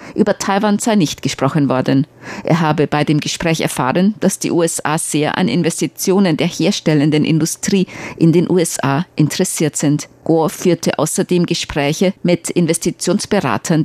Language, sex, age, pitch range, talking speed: German, female, 50-69, 145-180 Hz, 140 wpm